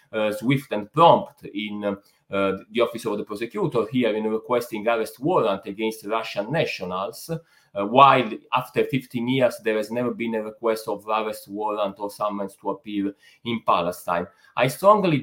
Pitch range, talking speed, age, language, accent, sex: 100-125 Hz, 160 wpm, 30-49, English, Italian, male